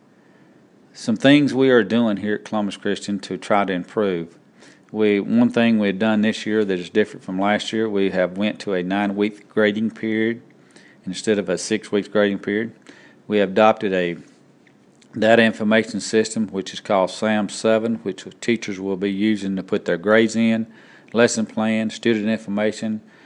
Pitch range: 100-110 Hz